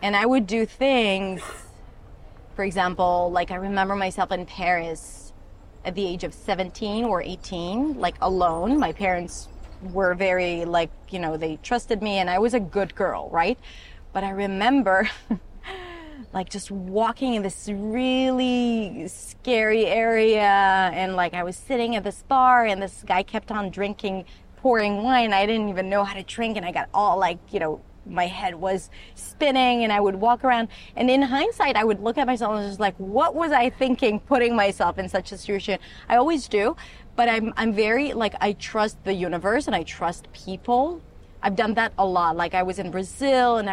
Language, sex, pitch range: English, female, 185-235 Hz